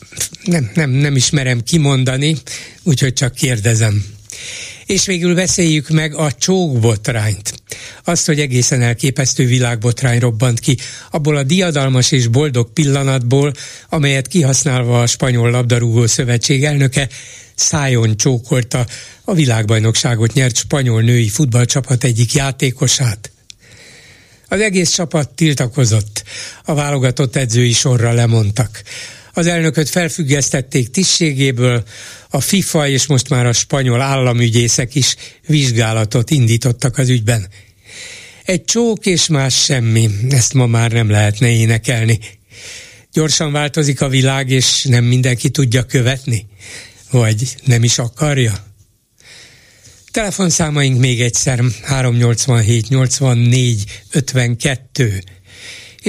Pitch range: 115-145 Hz